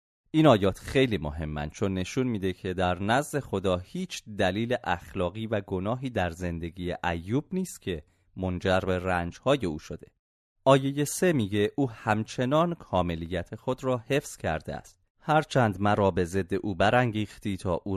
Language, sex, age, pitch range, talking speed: Persian, male, 30-49, 90-120 Hz, 150 wpm